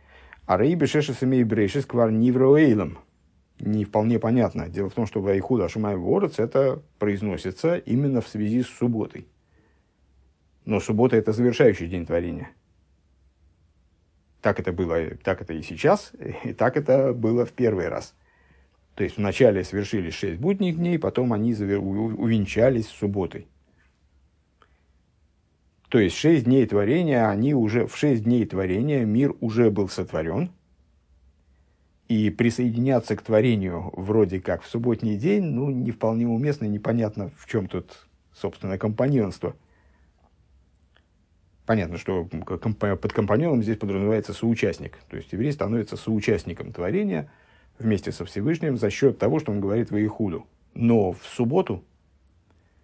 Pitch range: 85-120 Hz